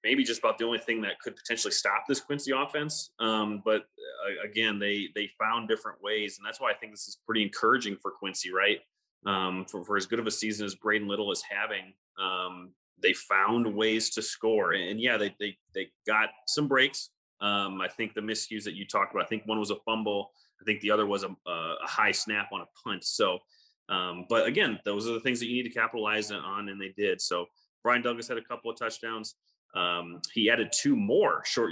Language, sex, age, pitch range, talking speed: English, male, 30-49, 100-115 Hz, 225 wpm